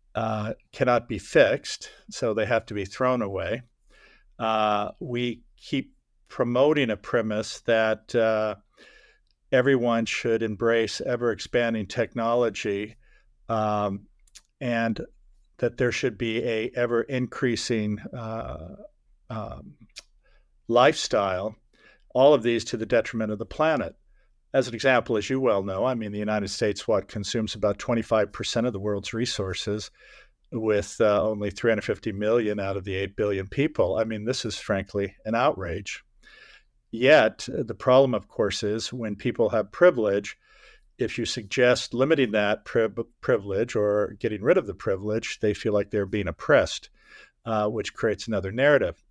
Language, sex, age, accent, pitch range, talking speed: English, male, 50-69, American, 105-120 Hz, 140 wpm